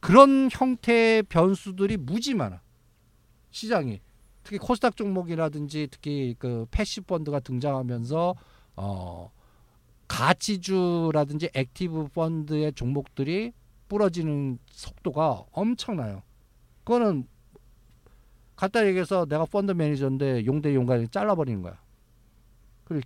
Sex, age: male, 50-69